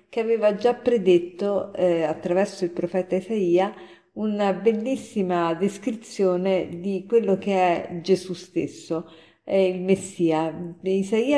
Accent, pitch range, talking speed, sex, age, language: native, 175-215 Hz, 115 wpm, female, 50-69, Italian